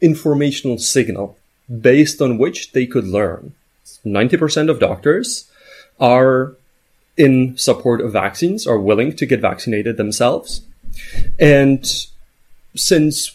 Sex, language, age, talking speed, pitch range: male, English, 30-49, 110 wpm, 105-145 Hz